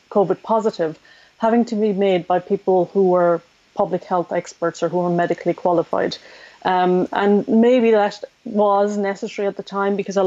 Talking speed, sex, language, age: 170 wpm, female, English, 30-49